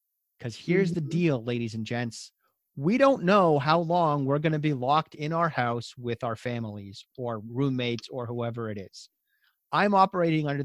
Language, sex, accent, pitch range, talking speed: English, male, American, 115-150 Hz, 180 wpm